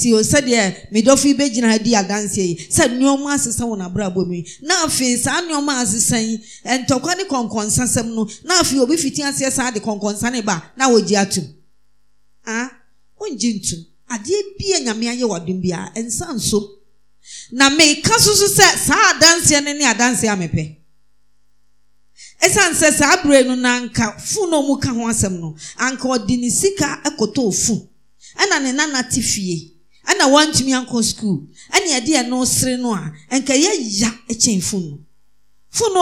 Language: English